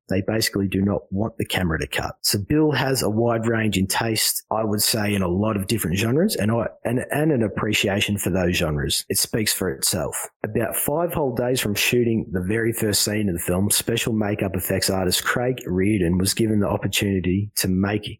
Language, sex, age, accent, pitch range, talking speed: English, male, 30-49, Australian, 95-120 Hz, 210 wpm